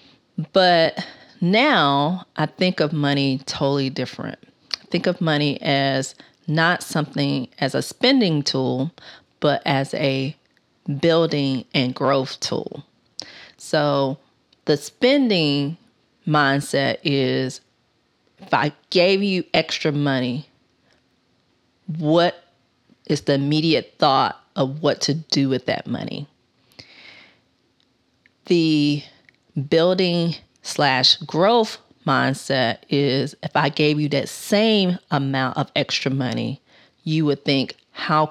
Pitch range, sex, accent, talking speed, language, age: 140-170 Hz, female, American, 105 wpm, English, 40-59